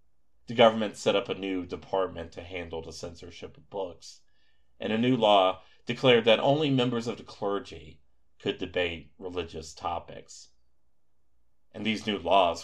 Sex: male